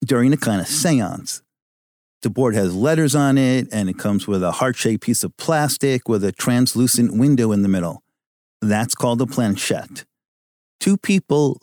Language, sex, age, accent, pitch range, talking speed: English, male, 50-69, American, 105-135 Hz, 170 wpm